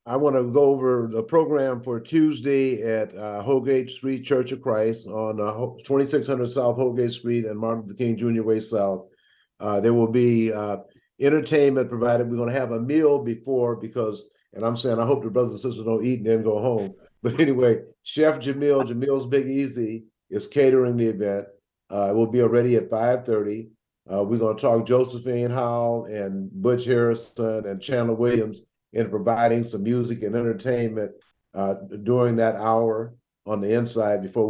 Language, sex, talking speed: English, male, 180 wpm